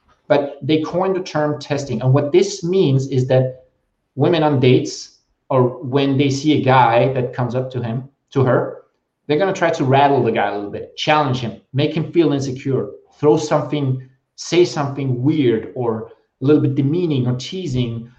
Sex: male